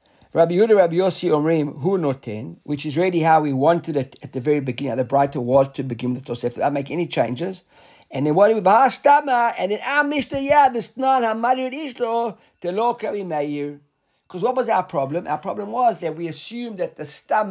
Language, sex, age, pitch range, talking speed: English, male, 50-69, 140-205 Hz, 220 wpm